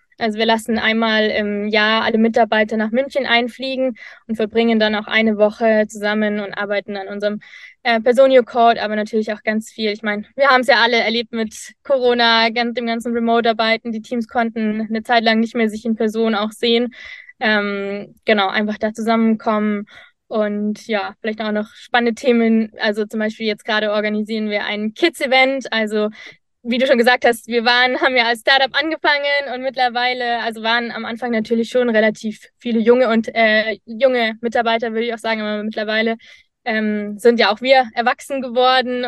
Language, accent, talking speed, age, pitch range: German, German, 180 wpm, 20-39, 215-245 Hz